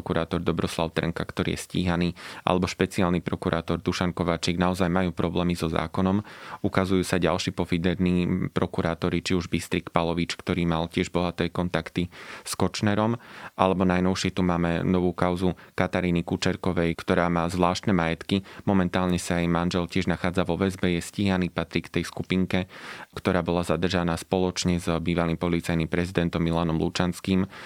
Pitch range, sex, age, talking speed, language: 85-95 Hz, male, 20-39, 145 wpm, Slovak